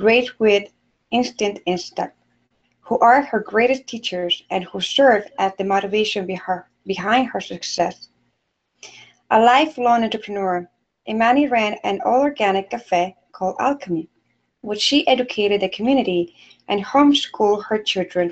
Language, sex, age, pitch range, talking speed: English, female, 30-49, 185-235 Hz, 125 wpm